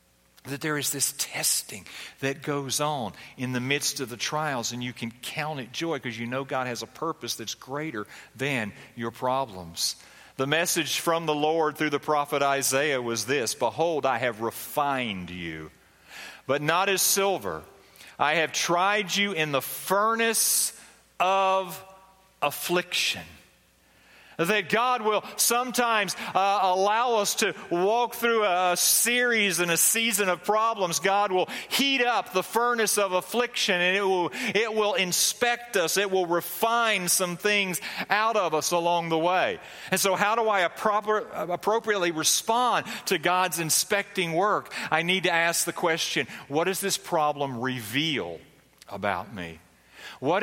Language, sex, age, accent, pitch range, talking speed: English, male, 40-59, American, 135-200 Hz, 155 wpm